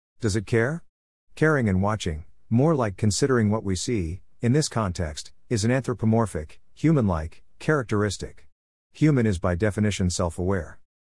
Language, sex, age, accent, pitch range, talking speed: English, male, 50-69, American, 90-115 Hz, 135 wpm